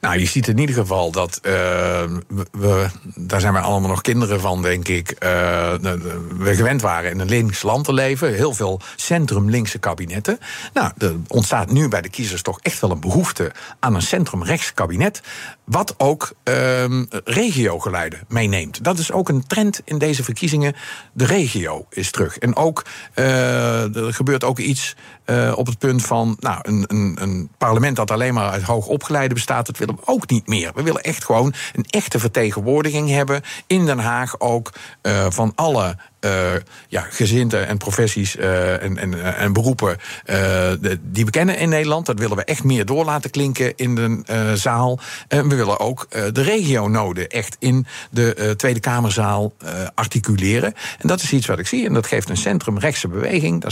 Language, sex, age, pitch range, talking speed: Dutch, male, 50-69, 100-135 Hz, 185 wpm